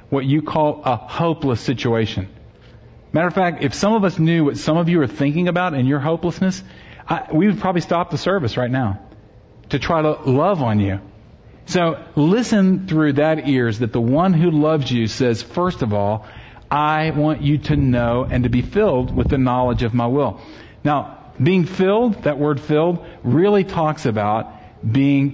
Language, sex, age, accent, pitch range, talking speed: English, male, 40-59, American, 120-160 Hz, 185 wpm